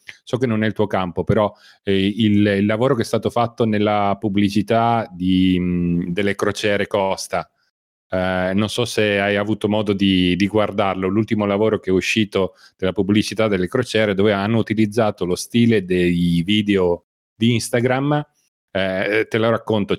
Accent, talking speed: native, 165 wpm